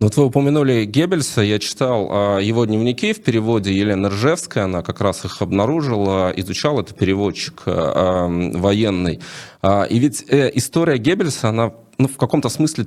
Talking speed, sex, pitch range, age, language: 145 wpm, male, 100-130 Hz, 20-39, Russian